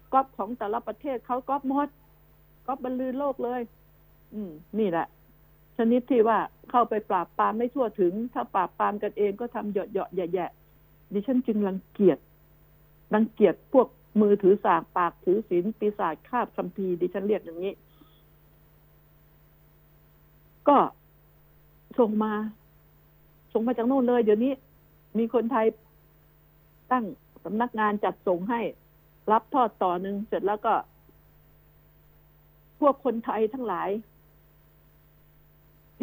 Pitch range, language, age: 200-245 Hz, Thai, 70-89